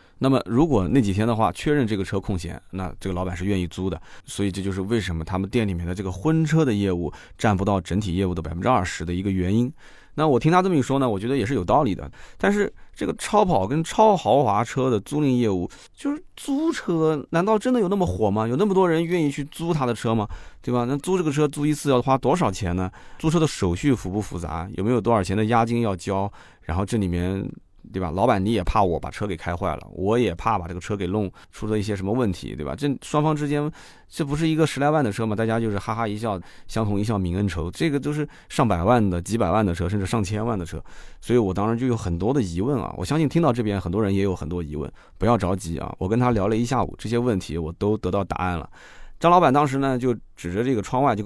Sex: male